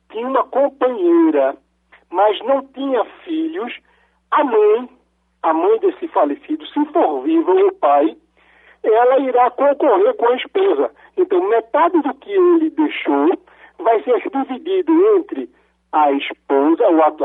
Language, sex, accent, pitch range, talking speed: Portuguese, male, Brazilian, 295-400 Hz, 130 wpm